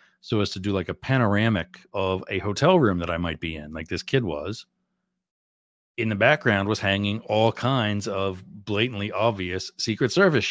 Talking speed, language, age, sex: 185 wpm, English, 40-59, male